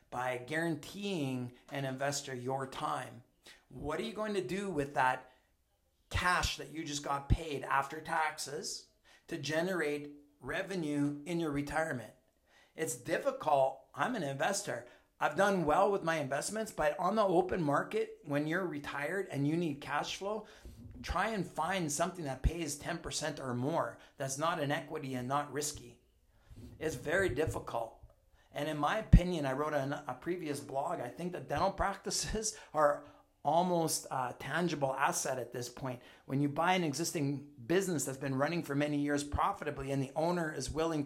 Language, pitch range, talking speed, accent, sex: English, 135-170 Hz, 165 wpm, American, male